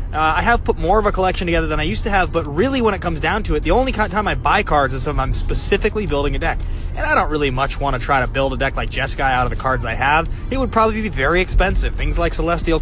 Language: English